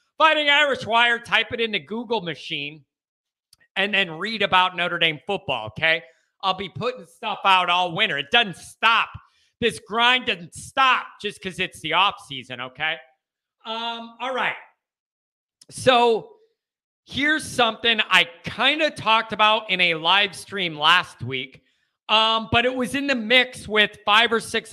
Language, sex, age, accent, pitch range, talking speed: English, male, 30-49, American, 170-235 Hz, 160 wpm